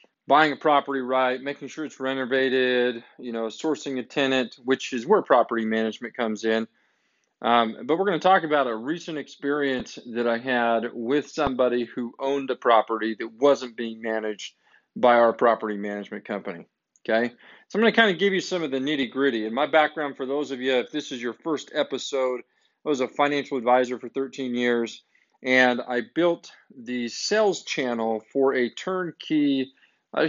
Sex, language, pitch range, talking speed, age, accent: male, English, 115-140 Hz, 180 wpm, 40-59, American